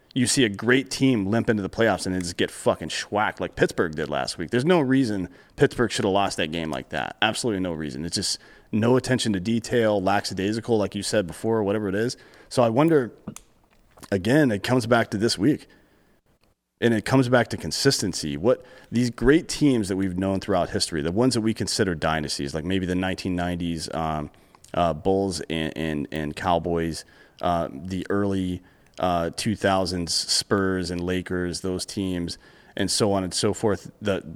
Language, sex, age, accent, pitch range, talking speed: English, male, 30-49, American, 90-115 Hz, 185 wpm